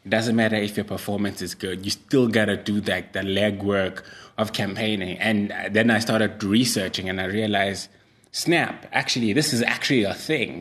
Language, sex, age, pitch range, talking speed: English, male, 20-39, 95-110 Hz, 185 wpm